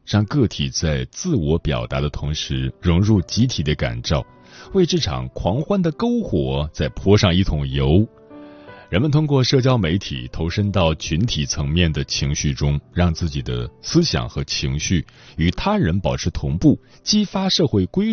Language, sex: Chinese, male